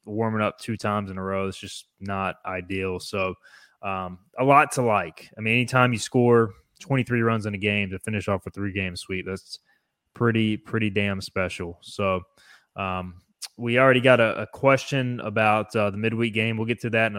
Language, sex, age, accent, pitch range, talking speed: English, male, 20-39, American, 100-120 Hz, 195 wpm